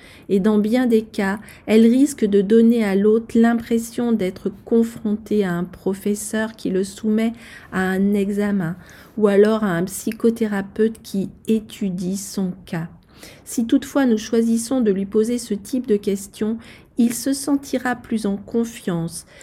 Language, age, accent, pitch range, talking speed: French, 40-59, French, 200-235 Hz, 150 wpm